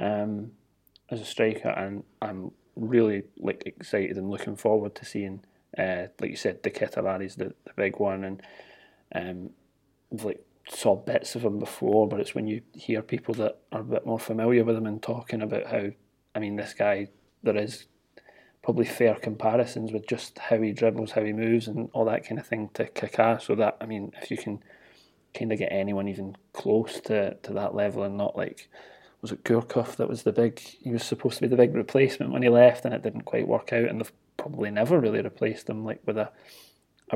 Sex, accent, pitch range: male, British, 105-115 Hz